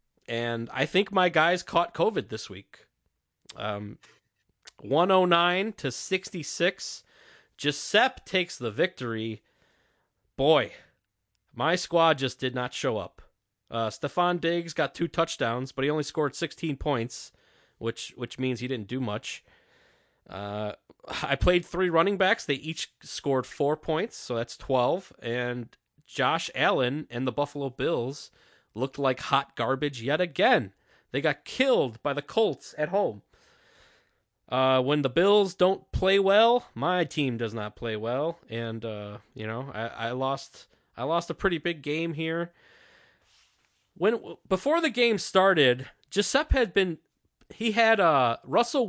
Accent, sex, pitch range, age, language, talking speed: American, male, 125-180 Hz, 30-49, English, 145 wpm